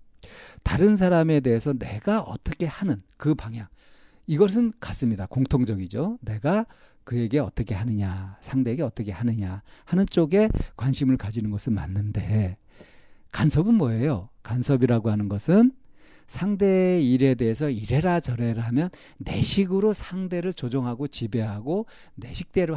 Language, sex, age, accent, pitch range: Korean, male, 50-69, native, 110-170 Hz